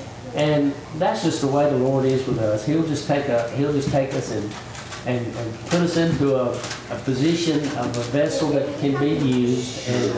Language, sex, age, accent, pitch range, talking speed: English, male, 60-79, American, 120-150 Hz, 205 wpm